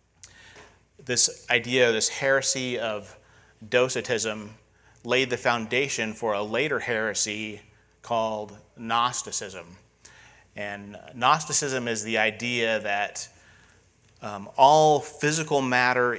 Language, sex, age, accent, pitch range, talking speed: English, male, 30-49, American, 105-120 Hz, 95 wpm